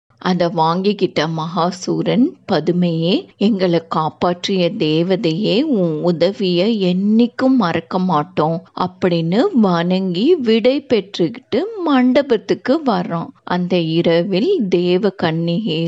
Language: Tamil